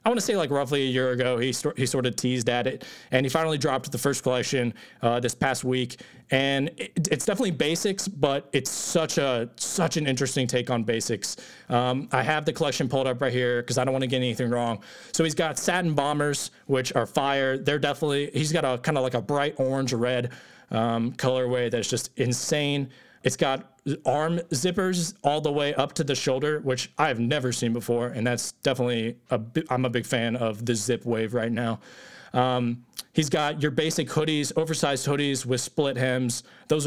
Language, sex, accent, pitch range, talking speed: English, male, American, 125-155 Hz, 210 wpm